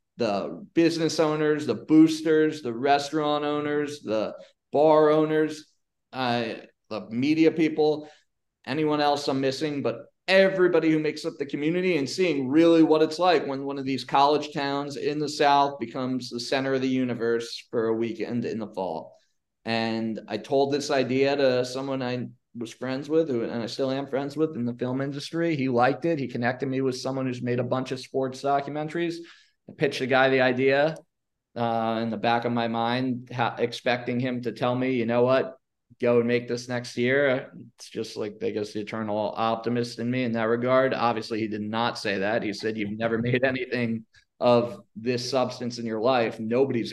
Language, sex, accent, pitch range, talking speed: English, male, American, 120-150 Hz, 190 wpm